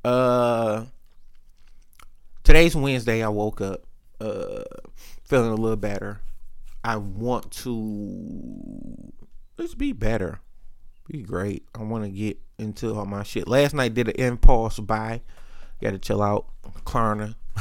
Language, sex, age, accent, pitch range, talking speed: English, male, 30-49, American, 105-130 Hz, 125 wpm